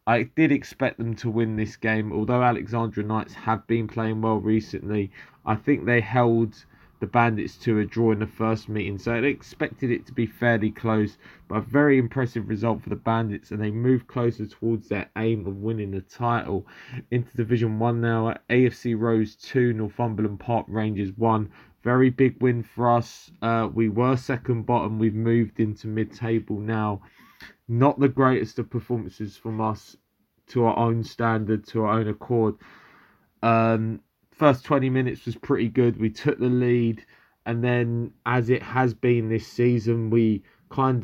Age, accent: 20-39, British